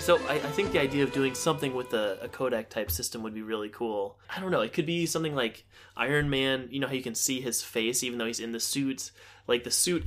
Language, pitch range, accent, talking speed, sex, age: English, 105-135 Hz, American, 275 wpm, male, 20-39